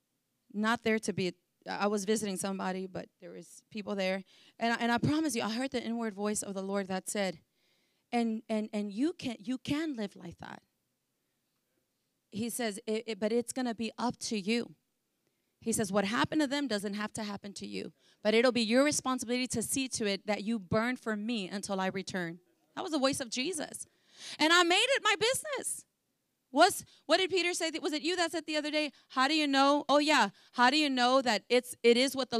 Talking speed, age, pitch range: 225 wpm, 30-49, 220-300 Hz